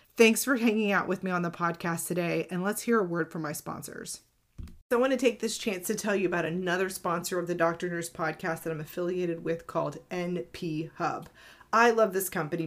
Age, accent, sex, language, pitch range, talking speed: 30-49, American, female, English, 175-230 Hz, 225 wpm